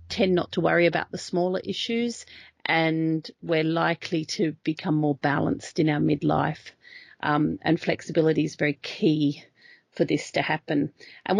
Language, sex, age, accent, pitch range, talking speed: English, female, 40-59, Australian, 155-180 Hz, 155 wpm